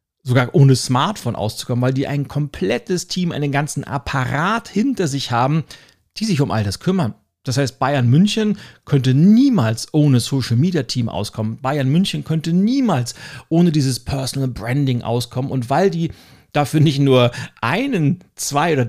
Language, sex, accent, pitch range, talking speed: German, male, German, 120-160 Hz, 160 wpm